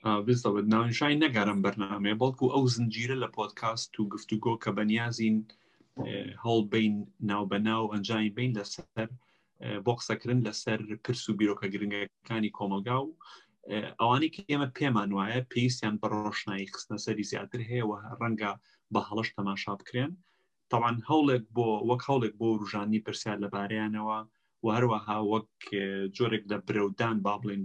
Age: 30-49